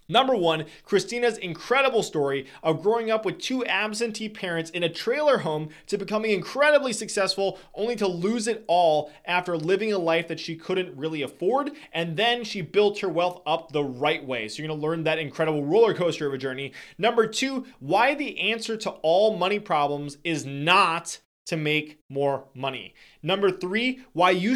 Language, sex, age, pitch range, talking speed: English, male, 20-39, 150-195 Hz, 180 wpm